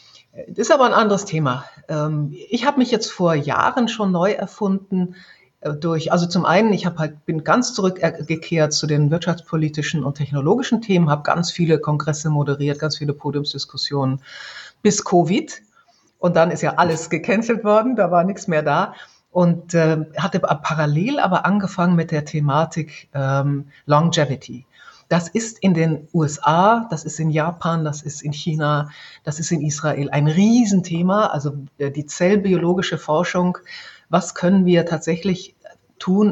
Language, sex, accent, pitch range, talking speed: German, female, German, 150-185 Hz, 150 wpm